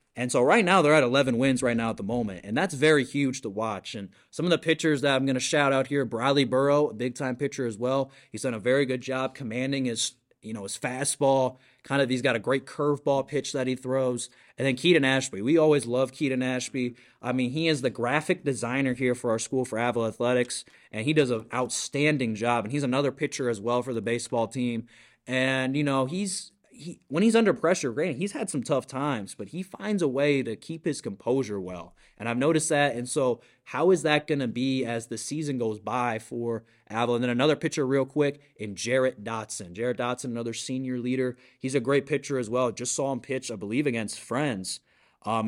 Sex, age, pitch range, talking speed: male, 20-39, 120-140 Hz, 230 wpm